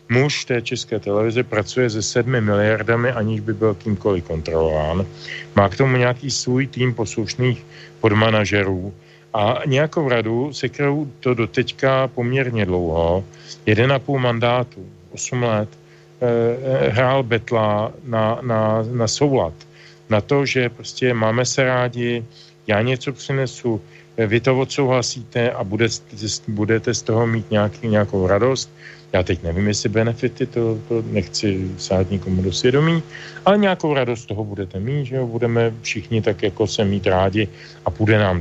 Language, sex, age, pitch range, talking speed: Slovak, male, 40-59, 105-130 Hz, 145 wpm